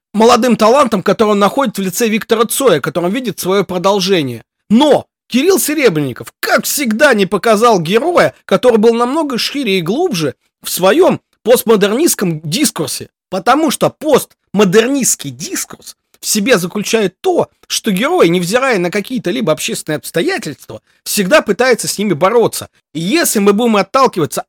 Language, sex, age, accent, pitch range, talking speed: Russian, male, 30-49, native, 160-235 Hz, 140 wpm